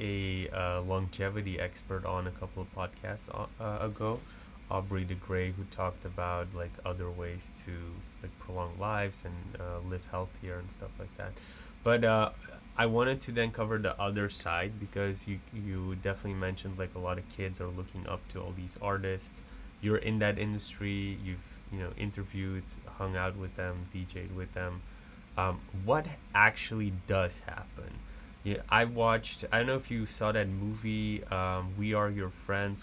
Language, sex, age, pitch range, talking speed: English, male, 20-39, 95-105 Hz, 175 wpm